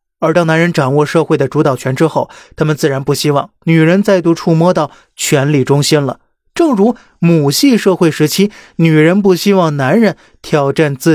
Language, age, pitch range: Chinese, 20-39, 145-190 Hz